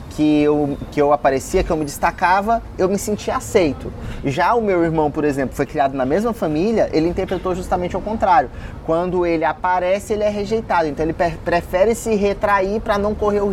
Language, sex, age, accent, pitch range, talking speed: Portuguese, male, 20-39, Brazilian, 155-205 Hz, 190 wpm